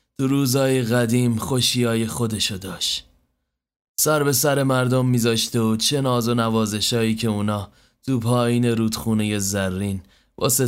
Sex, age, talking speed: male, 30-49, 125 wpm